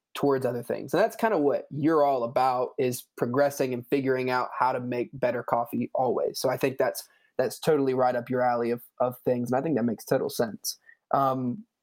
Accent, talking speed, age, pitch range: American, 220 wpm, 20-39, 125-155 Hz